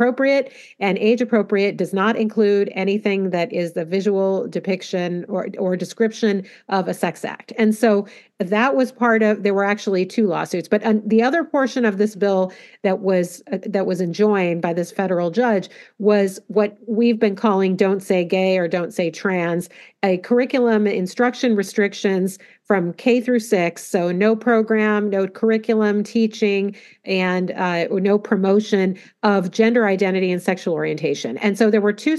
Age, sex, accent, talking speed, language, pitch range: 40-59, female, American, 170 wpm, English, 185-220 Hz